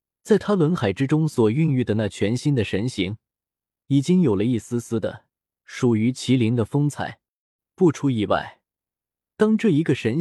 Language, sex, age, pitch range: Chinese, male, 20-39, 110-165 Hz